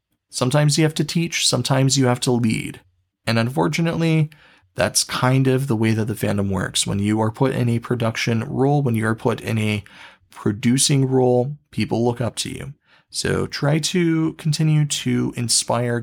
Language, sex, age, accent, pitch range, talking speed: English, male, 30-49, American, 105-150 Hz, 175 wpm